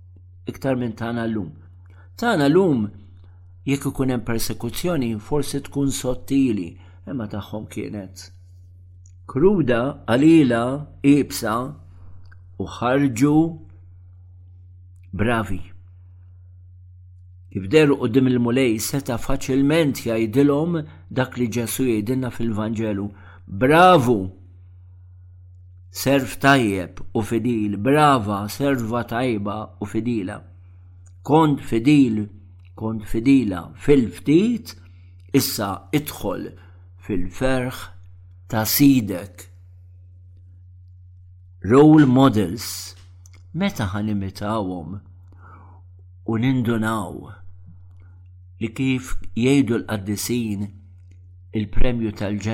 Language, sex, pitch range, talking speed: English, male, 90-125 Hz, 75 wpm